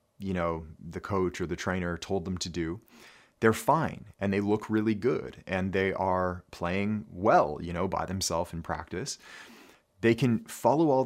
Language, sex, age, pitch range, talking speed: English, male, 30-49, 85-105 Hz, 180 wpm